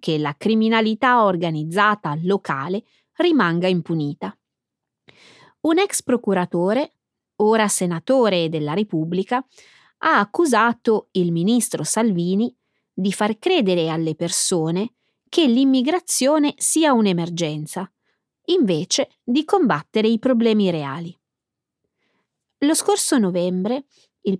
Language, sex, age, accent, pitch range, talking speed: Italian, female, 20-39, native, 175-260 Hz, 95 wpm